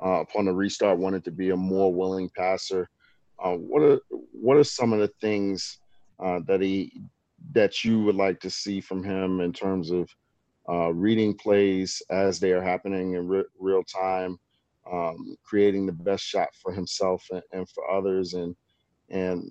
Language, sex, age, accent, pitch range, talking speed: English, male, 40-59, American, 95-115 Hz, 180 wpm